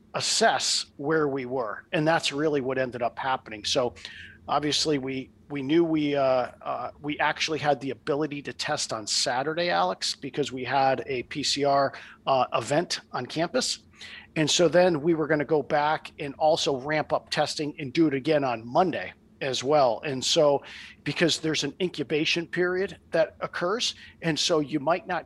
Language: English